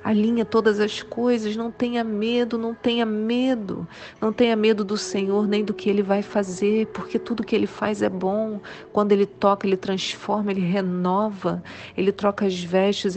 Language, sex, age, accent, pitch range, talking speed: Portuguese, female, 40-59, Brazilian, 190-215 Hz, 180 wpm